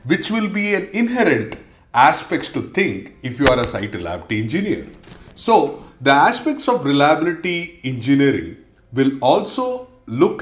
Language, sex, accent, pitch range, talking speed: English, male, Indian, 115-170 Hz, 140 wpm